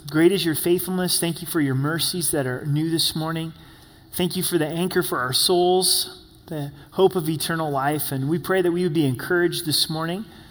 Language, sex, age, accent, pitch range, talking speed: English, male, 30-49, American, 145-175 Hz, 210 wpm